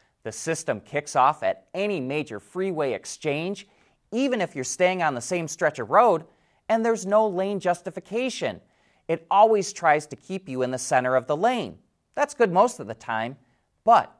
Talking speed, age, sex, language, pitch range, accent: 180 wpm, 30-49, male, English, 125-205 Hz, American